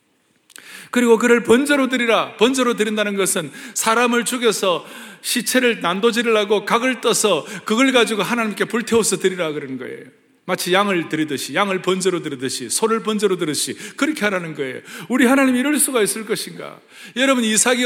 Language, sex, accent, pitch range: Korean, male, native, 195-255 Hz